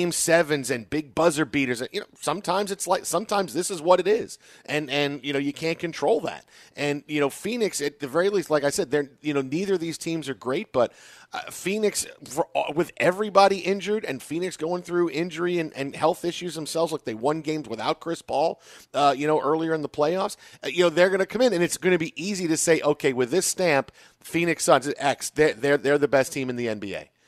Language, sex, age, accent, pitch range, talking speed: English, male, 40-59, American, 135-165 Hz, 235 wpm